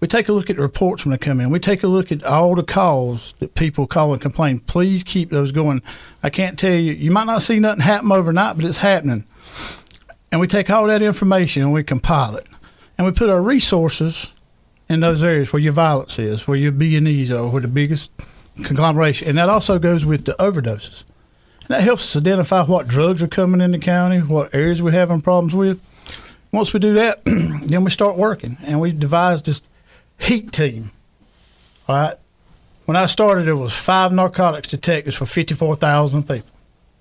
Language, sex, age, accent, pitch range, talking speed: English, male, 60-79, American, 145-185 Hz, 200 wpm